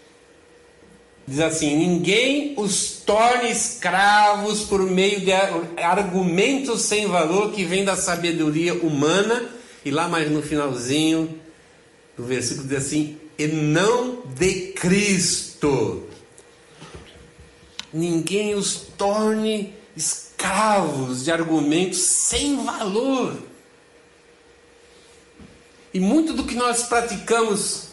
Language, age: Portuguese, 60-79